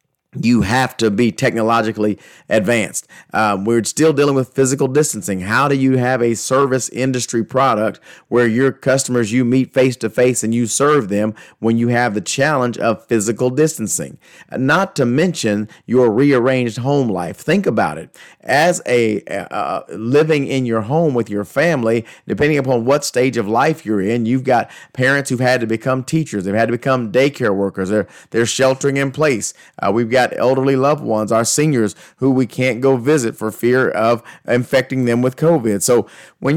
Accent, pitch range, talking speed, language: American, 115-140 Hz, 180 wpm, English